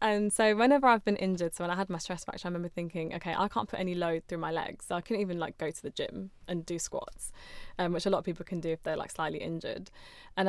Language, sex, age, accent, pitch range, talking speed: English, female, 10-29, British, 170-200 Hz, 290 wpm